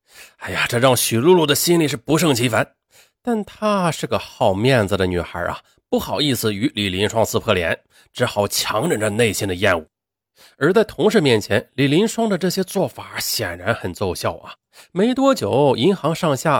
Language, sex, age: Chinese, male, 30-49